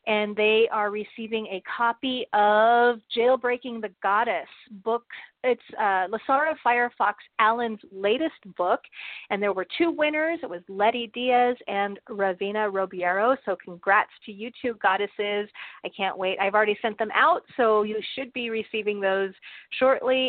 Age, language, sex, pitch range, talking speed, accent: 30-49, English, female, 210-275 Hz, 150 wpm, American